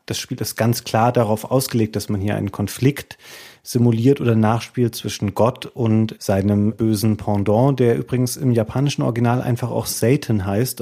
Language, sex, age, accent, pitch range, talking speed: German, male, 40-59, German, 110-130 Hz, 165 wpm